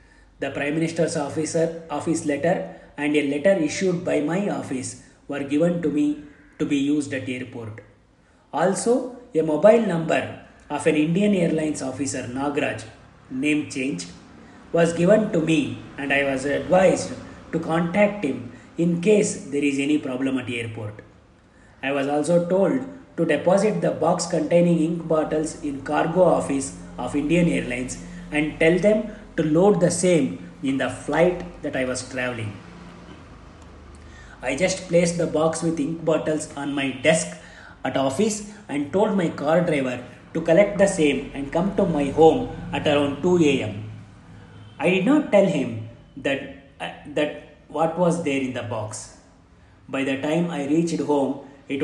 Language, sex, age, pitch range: Kannada, male, 30-49, 135-170 Hz